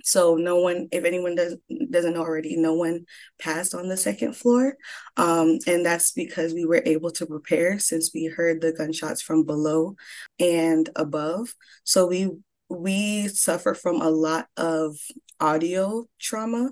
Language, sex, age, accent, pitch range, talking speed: English, female, 20-39, American, 160-185 Hz, 160 wpm